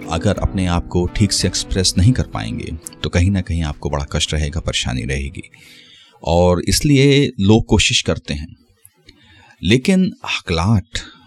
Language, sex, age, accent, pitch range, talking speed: Hindi, male, 30-49, native, 75-100 Hz, 150 wpm